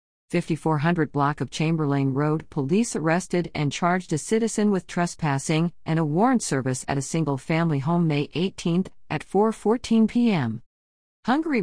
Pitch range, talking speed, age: 150-200 Hz, 140 wpm, 50-69